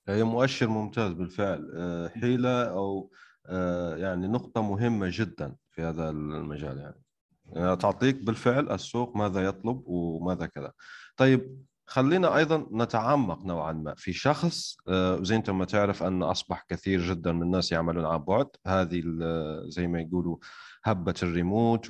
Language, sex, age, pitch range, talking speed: Arabic, male, 30-49, 90-130 Hz, 135 wpm